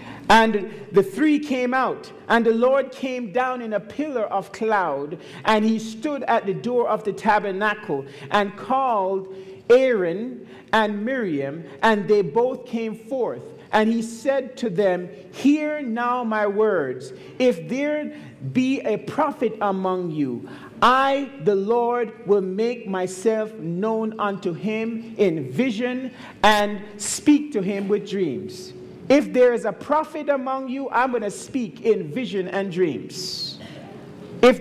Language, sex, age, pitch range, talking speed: English, male, 50-69, 200-255 Hz, 145 wpm